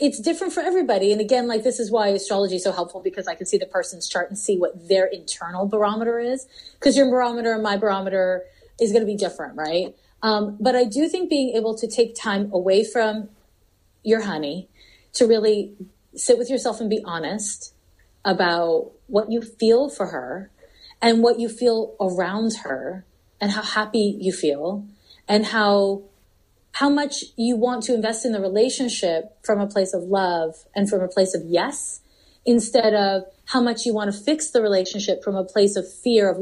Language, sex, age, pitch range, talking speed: English, female, 30-49, 190-235 Hz, 195 wpm